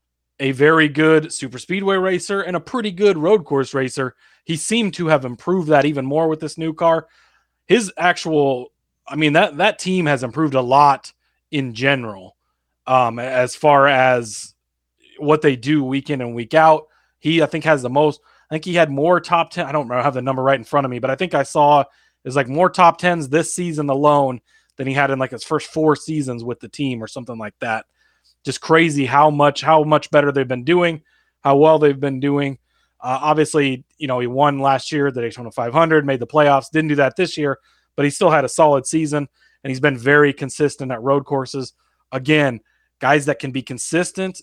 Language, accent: English, American